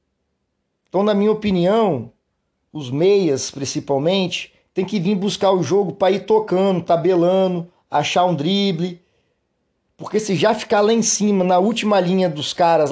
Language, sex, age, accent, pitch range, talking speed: Portuguese, male, 40-59, Brazilian, 155-185 Hz, 150 wpm